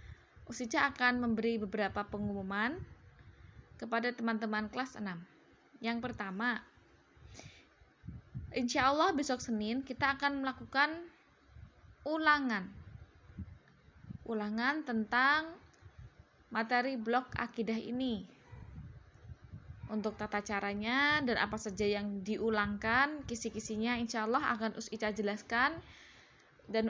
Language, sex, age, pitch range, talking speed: Indonesian, female, 20-39, 210-255 Hz, 90 wpm